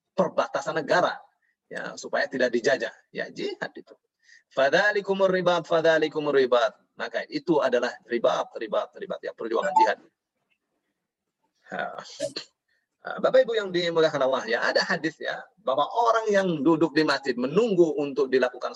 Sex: male